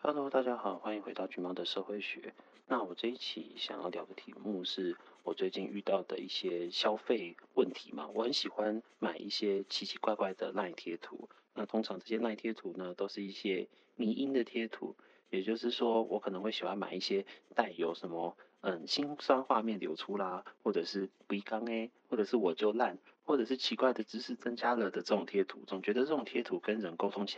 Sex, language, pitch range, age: male, Chinese, 100-130 Hz, 30-49